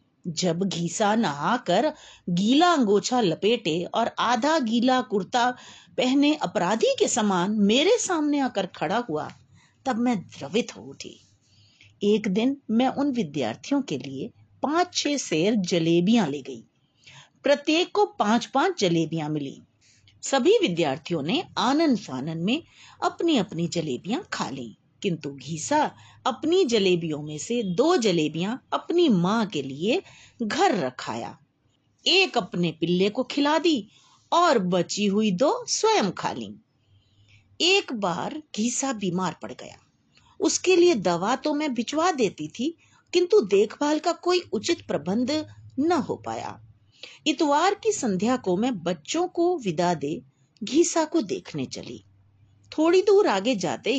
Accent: native